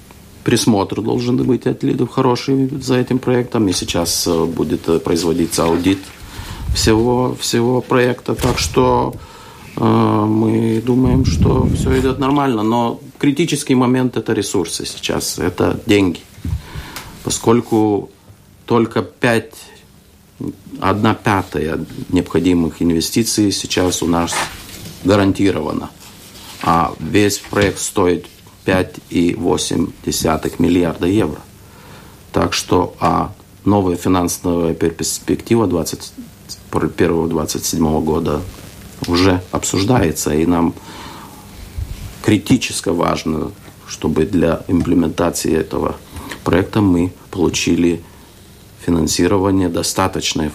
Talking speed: 85 wpm